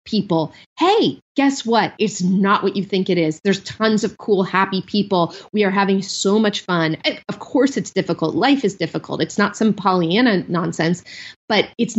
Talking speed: 185 wpm